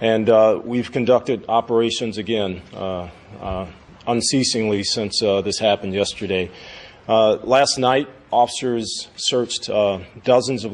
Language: English